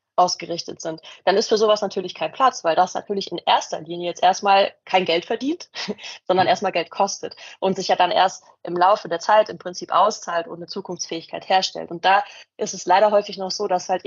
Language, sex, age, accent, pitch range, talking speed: German, female, 20-39, German, 170-200 Hz, 215 wpm